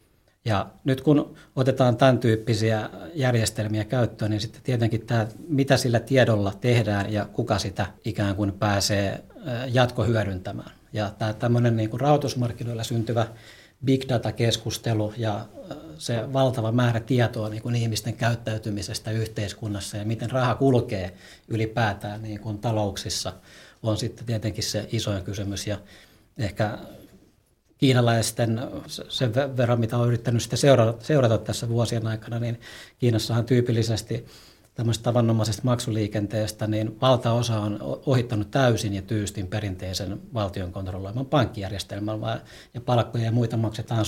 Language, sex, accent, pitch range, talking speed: Finnish, male, native, 105-120 Hz, 115 wpm